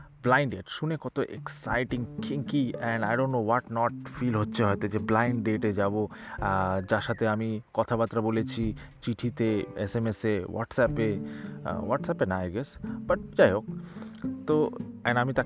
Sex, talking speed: male, 80 wpm